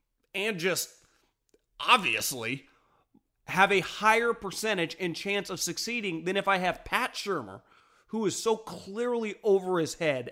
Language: English